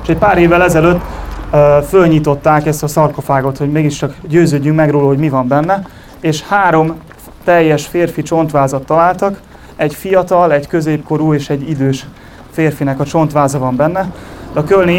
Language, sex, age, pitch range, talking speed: Hungarian, male, 30-49, 145-165 Hz, 155 wpm